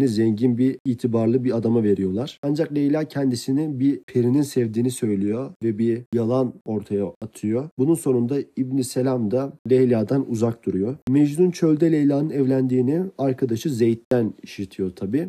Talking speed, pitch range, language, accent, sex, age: 135 wpm, 110-135 Hz, Turkish, native, male, 40-59